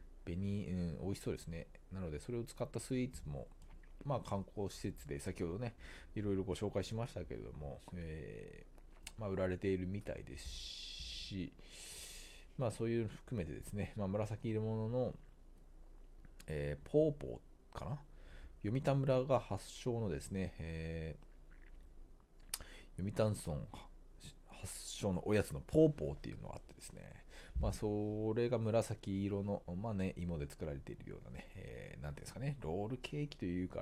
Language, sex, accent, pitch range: Japanese, male, native, 80-115 Hz